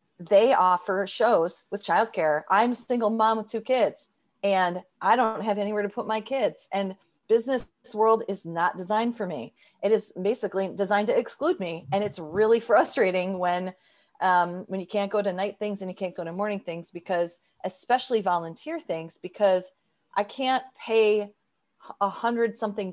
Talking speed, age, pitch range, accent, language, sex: 175 wpm, 40-59, 180-220 Hz, American, English, female